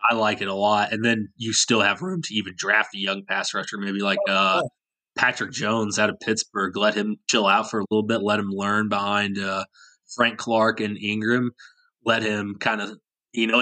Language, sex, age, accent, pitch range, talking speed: English, male, 20-39, American, 105-125 Hz, 215 wpm